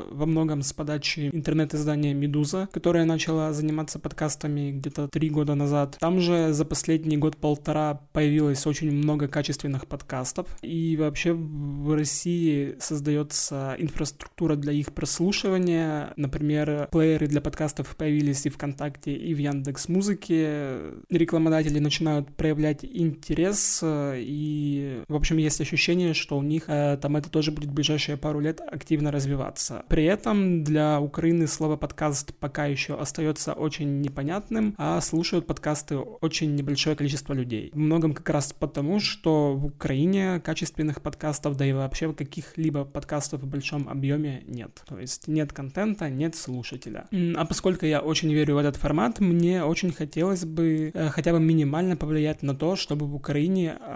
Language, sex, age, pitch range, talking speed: Ukrainian, male, 20-39, 145-160 Hz, 145 wpm